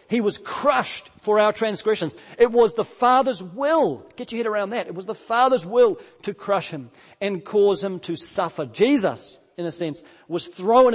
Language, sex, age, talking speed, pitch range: English, male, 40-59, 190 wpm, 175-230 Hz